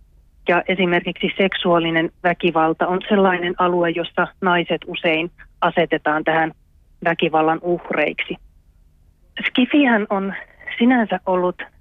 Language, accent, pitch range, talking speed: Finnish, native, 165-195 Hz, 90 wpm